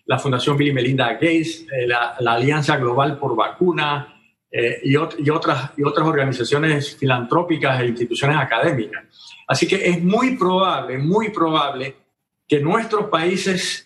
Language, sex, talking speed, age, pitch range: Spanish, male, 140 wpm, 50-69, 135-170 Hz